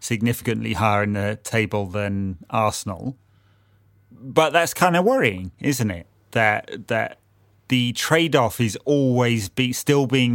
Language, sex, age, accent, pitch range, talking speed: English, male, 30-49, British, 100-125 Hz, 135 wpm